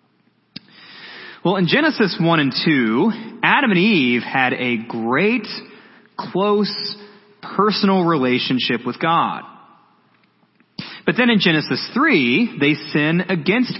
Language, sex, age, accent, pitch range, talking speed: English, male, 30-49, American, 135-210 Hz, 110 wpm